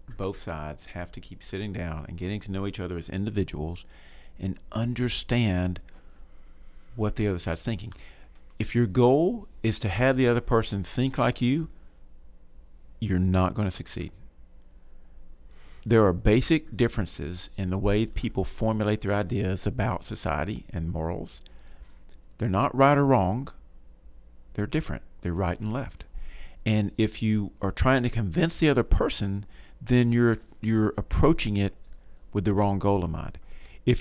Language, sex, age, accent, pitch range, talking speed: English, male, 50-69, American, 85-115 Hz, 155 wpm